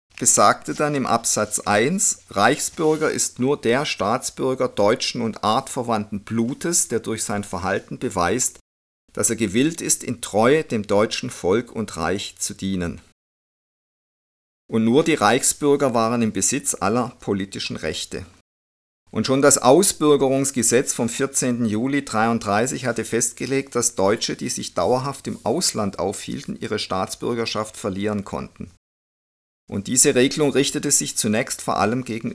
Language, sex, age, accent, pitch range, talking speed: German, male, 50-69, German, 100-135 Hz, 135 wpm